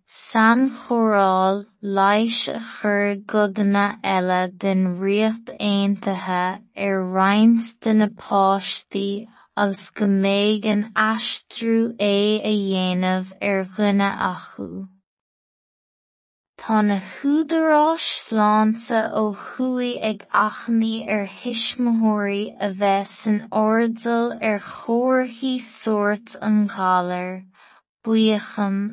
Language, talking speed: English, 80 wpm